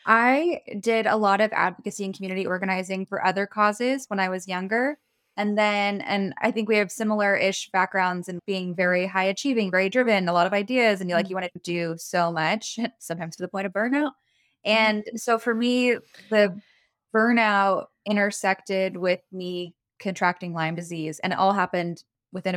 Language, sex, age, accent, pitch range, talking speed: English, female, 20-39, American, 180-210 Hz, 185 wpm